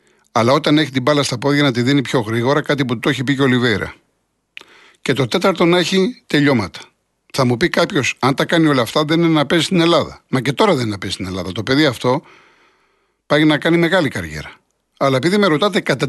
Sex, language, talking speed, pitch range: male, Greek, 230 wpm, 125-170 Hz